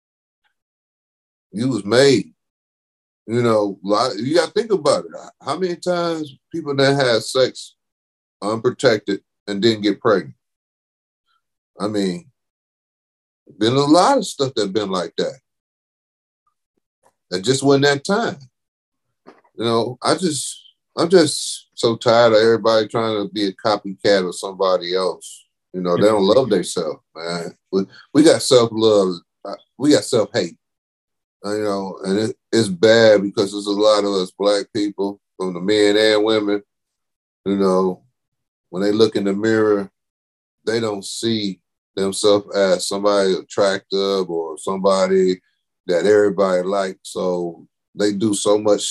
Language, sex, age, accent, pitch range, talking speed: English, male, 40-59, American, 95-115 Hz, 140 wpm